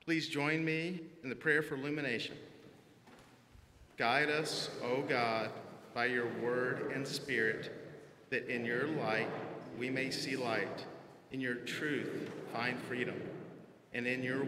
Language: English